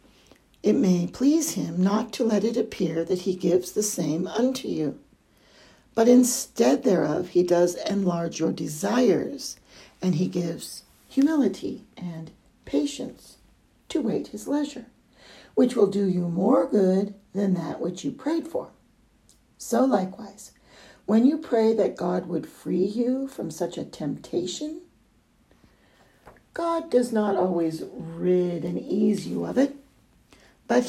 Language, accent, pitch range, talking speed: English, American, 180-245 Hz, 140 wpm